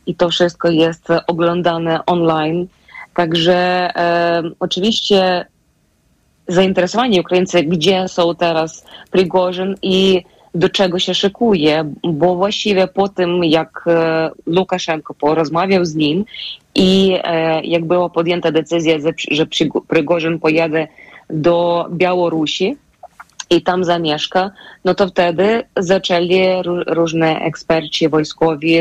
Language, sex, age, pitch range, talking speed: Polish, female, 20-39, 160-185 Hz, 110 wpm